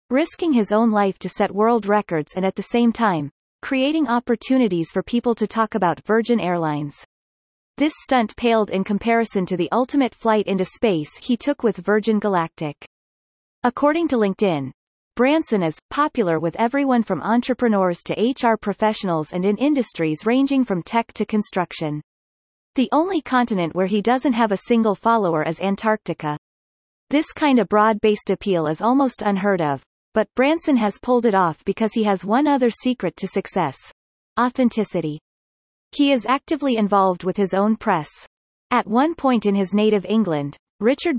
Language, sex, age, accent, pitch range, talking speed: English, female, 30-49, American, 185-245 Hz, 160 wpm